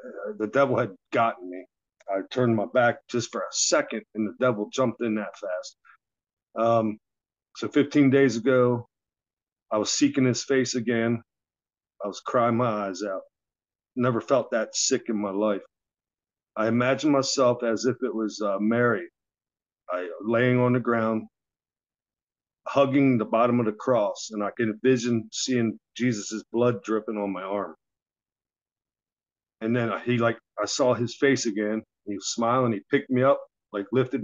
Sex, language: male, English